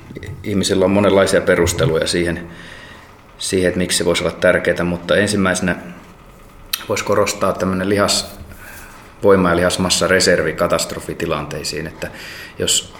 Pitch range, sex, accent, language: 85-90 Hz, male, native, Finnish